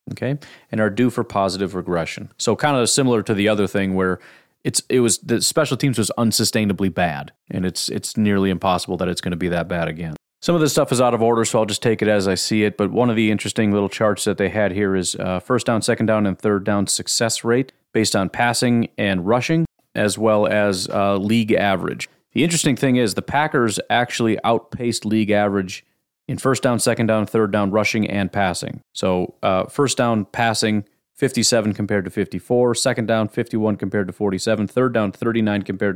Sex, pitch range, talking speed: male, 100-120 Hz, 210 wpm